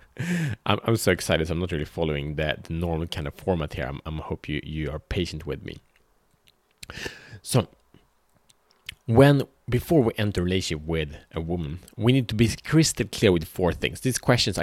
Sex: male